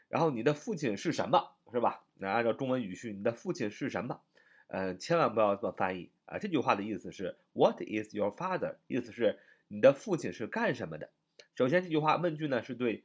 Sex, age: male, 30-49